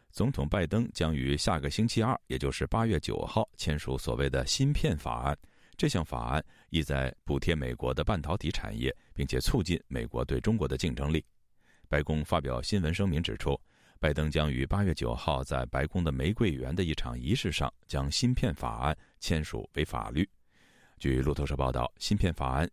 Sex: male